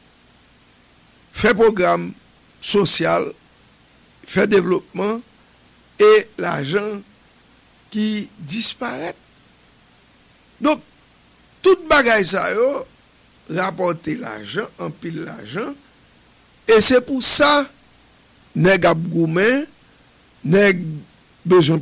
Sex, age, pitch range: male, 60-79, 160-230 Hz